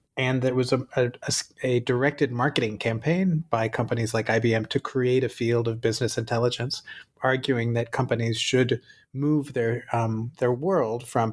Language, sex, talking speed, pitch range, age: English, male, 160 wpm, 115-135 Hz, 30-49